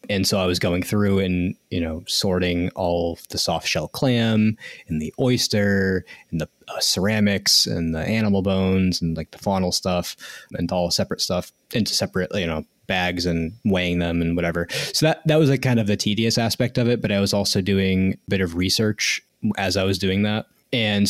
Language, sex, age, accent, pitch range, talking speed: English, male, 20-39, American, 90-115 Hz, 210 wpm